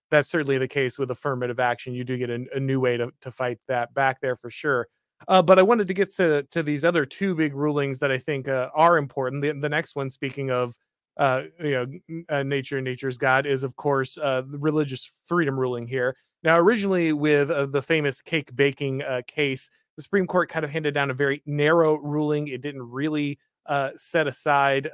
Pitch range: 130-150 Hz